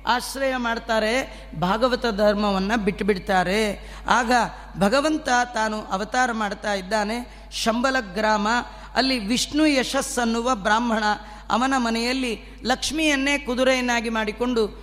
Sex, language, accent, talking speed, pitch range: female, Kannada, native, 90 wpm, 225-265 Hz